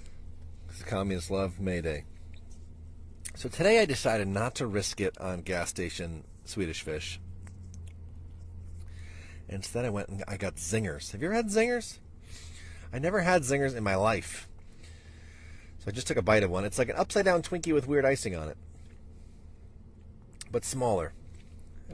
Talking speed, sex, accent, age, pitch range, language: 160 wpm, male, American, 40-59, 80-100 Hz, English